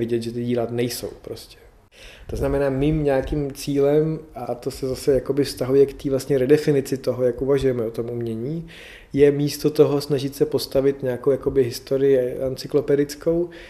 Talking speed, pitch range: 160 wpm, 120-140 Hz